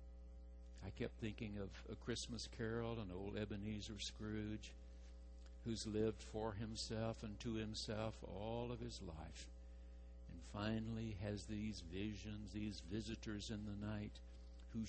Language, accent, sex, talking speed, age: English, American, male, 135 wpm, 60-79